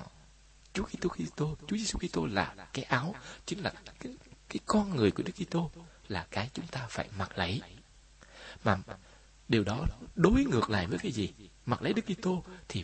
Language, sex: Vietnamese, male